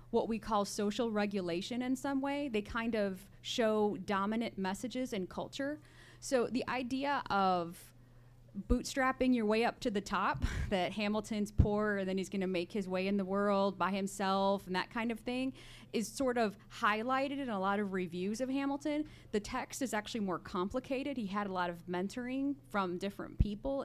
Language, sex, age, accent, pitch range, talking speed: English, female, 30-49, American, 195-245 Hz, 185 wpm